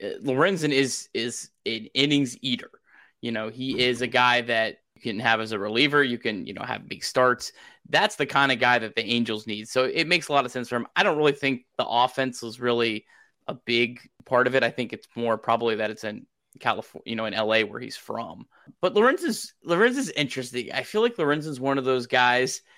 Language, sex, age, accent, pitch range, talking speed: English, male, 20-39, American, 120-150 Hz, 225 wpm